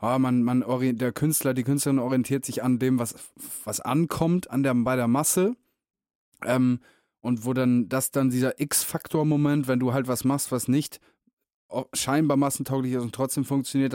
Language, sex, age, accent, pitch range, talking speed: German, male, 20-39, German, 125-150 Hz, 170 wpm